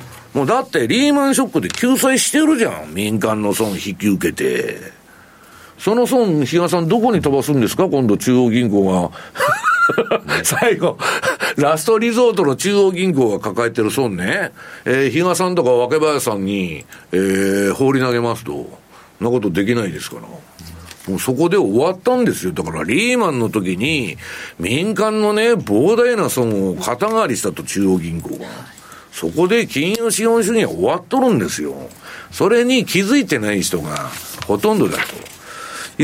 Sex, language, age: male, Japanese, 60-79